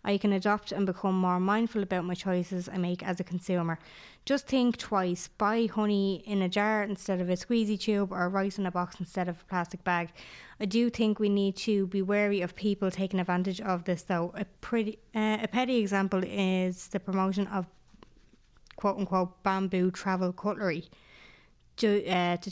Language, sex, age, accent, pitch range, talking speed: English, female, 20-39, Irish, 180-200 Hz, 190 wpm